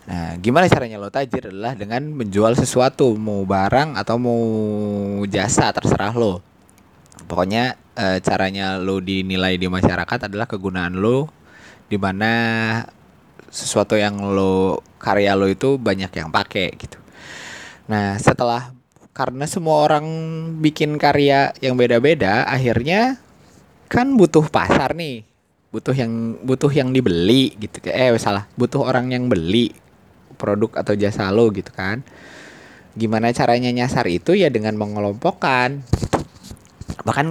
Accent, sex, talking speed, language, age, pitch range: native, male, 125 wpm, Indonesian, 20-39, 105-155 Hz